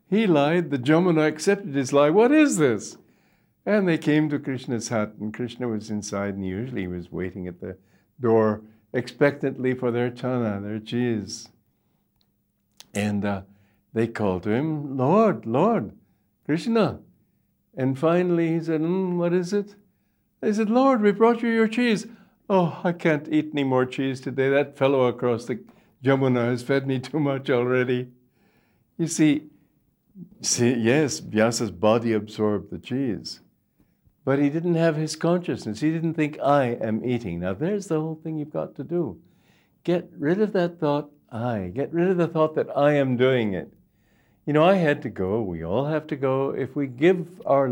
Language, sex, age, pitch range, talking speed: English, male, 60-79, 110-160 Hz, 175 wpm